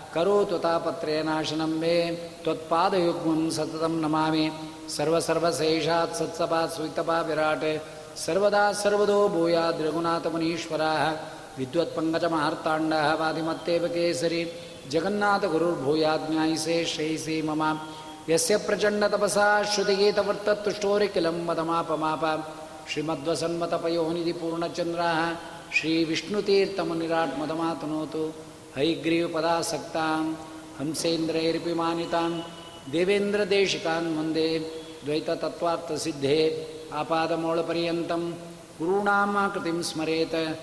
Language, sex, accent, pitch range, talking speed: Kannada, male, native, 160-190 Hz, 55 wpm